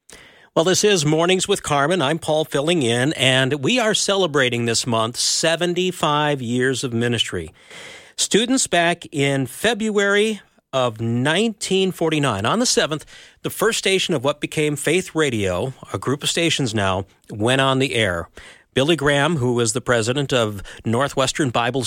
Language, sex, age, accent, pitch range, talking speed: English, male, 50-69, American, 115-155 Hz, 150 wpm